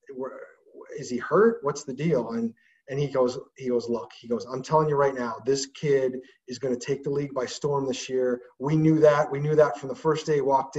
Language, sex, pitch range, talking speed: English, male, 135-175 Hz, 245 wpm